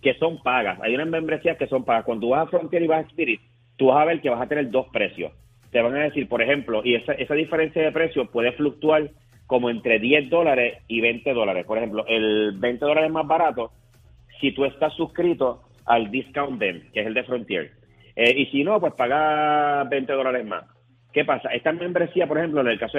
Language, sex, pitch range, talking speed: Spanish, male, 120-150 Hz, 220 wpm